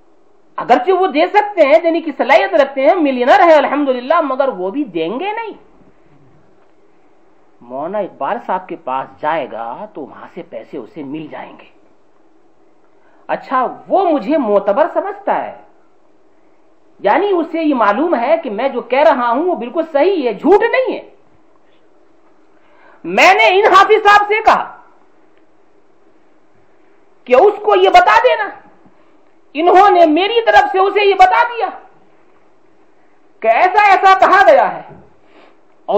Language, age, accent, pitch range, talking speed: English, 50-69, Indian, 260-370 Hz, 135 wpm